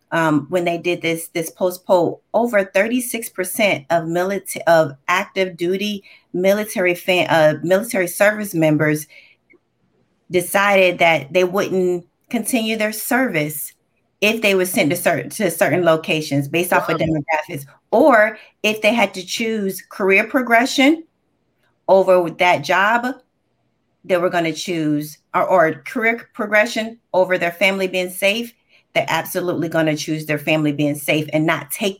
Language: English